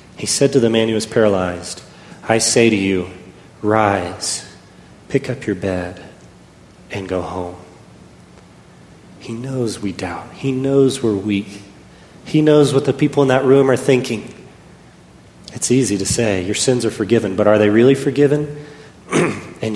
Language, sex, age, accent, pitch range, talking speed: English, male, 30-49, American, 95-115 Hz, 160 wpm